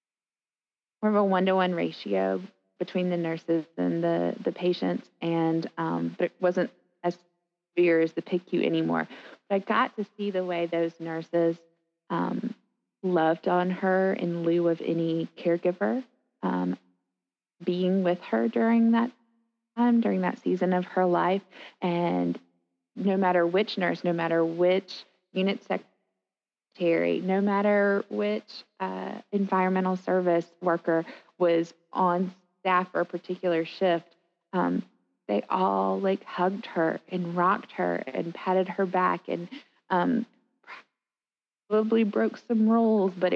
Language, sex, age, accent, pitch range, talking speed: English, female, 20-39, American, 165-195 Hz, 135 wpm